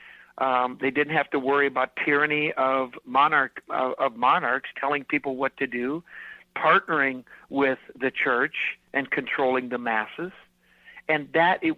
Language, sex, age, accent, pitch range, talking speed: English, male, 60-79, American, 125-155 Hz, 150 wpm